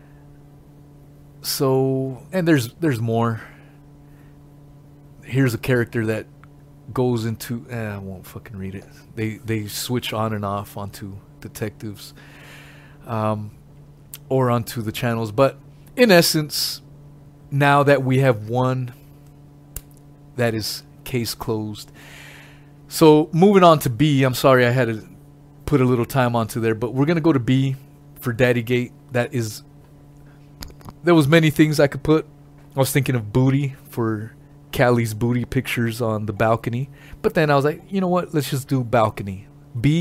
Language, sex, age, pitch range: English, male, 30-49, 120-145 Hz